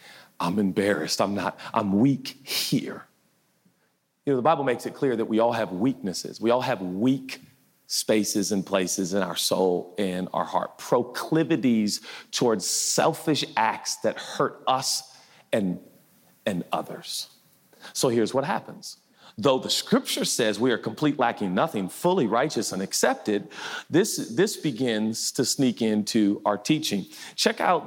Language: English